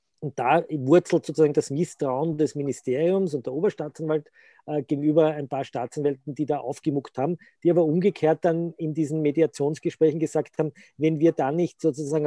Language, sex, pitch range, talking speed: German, male, 145-170 Hz, 160 wpm